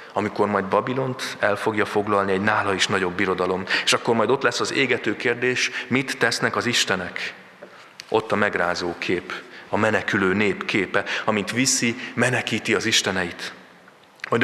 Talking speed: 155 wpm